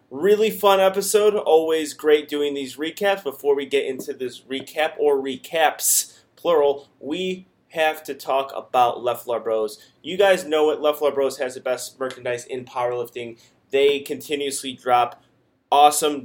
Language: English